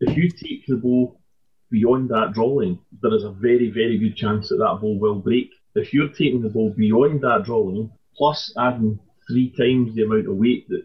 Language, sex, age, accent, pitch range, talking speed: English, male, 30-49, British, 110-140 Hz, 205 wpm